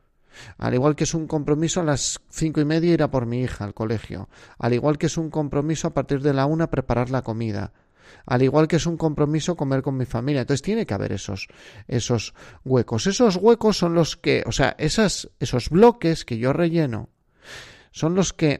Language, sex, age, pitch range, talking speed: Spanish, male, 30-49, 115-160 Hz, 210 wpm